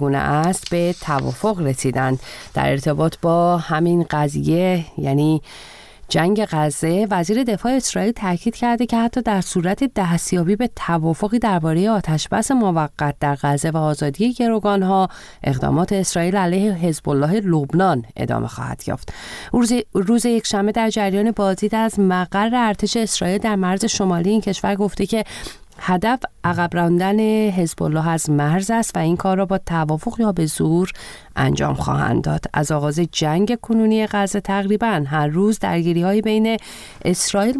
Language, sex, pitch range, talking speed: Persian, female, 160-210 Hz, 145 wpm